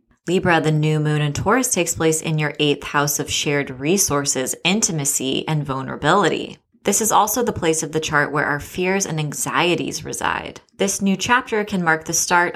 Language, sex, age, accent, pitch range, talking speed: English, female, 20-39, American, 145-180 Hz, 185 wpm